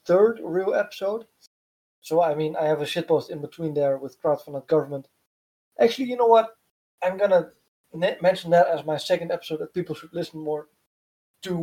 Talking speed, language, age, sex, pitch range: 170 wpm, English, 20-39, male, 150-180 Hz